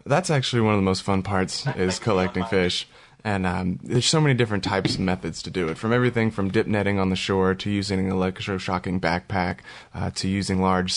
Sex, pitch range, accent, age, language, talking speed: male, 95-105 Hz, American, 20-39, English, 220 wpm